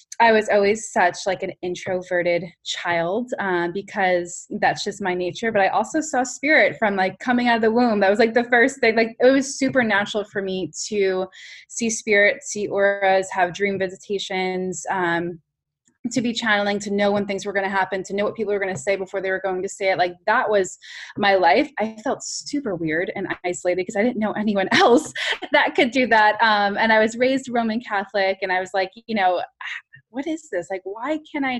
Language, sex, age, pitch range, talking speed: English, female, 20-39, 185-245 Hz, 220 wpm